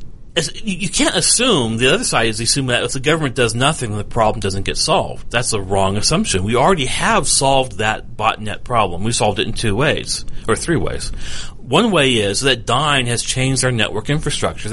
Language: English